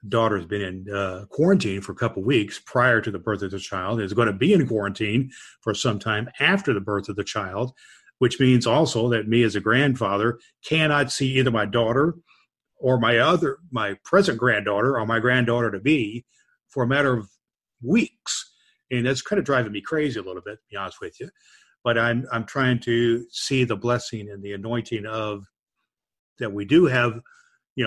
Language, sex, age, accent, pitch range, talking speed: English, male, 50-69, American, 100-130 Hz, 200 wpm